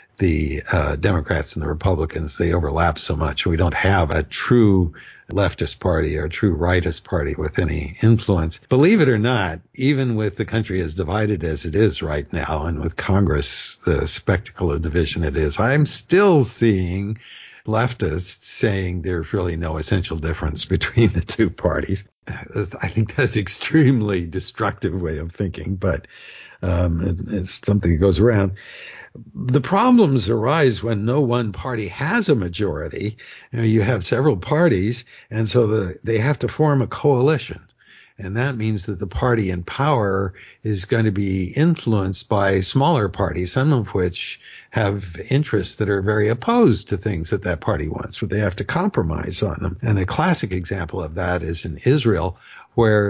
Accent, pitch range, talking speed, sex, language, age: American, 90-115 Hz, 170 wpm, male, English, 60-79